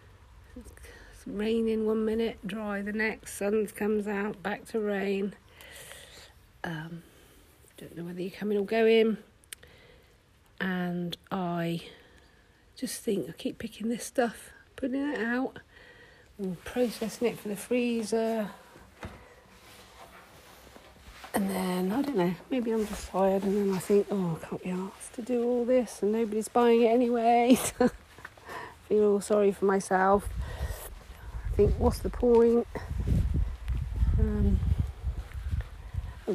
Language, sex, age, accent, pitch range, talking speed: English, female, 50-69, British, 185-235 Hz, 125 wpm